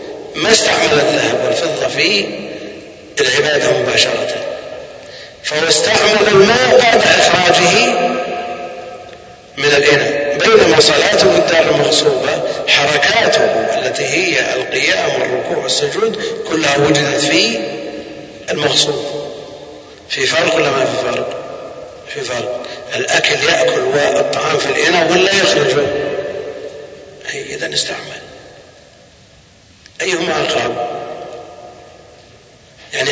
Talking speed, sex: 90 wpm, male